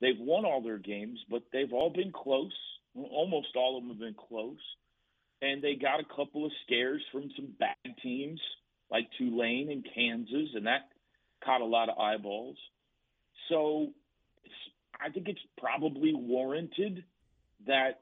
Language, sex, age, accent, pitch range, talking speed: English, male, 40-59, American, 115-180 Hz, 155 wpm